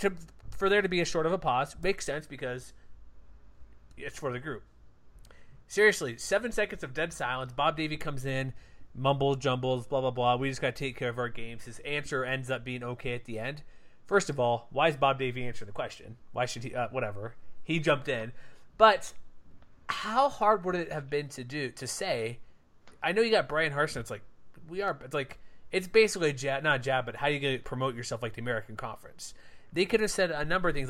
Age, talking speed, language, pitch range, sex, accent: 30-49, 240 wpm, English, 120-150 Hz, male, American